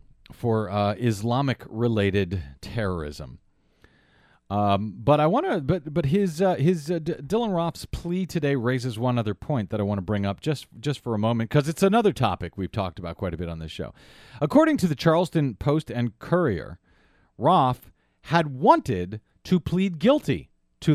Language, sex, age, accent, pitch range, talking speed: English, male, 40-59, American, 115-160 Hz, 180 wpm